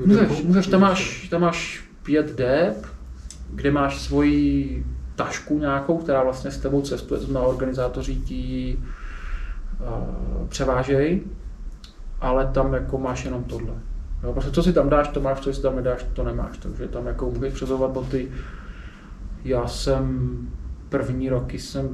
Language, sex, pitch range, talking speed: Czech, male, 115-135 Hz, 150 wpm